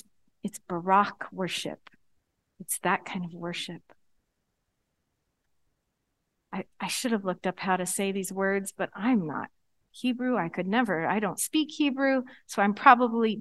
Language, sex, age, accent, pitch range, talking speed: English, female, 40-59, American, 195-245 Hz, 150 wpm